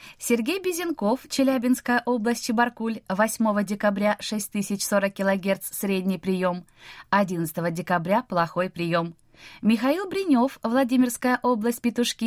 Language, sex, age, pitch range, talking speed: Russian, female, 20-39, 180-250 Hz, 100 wpm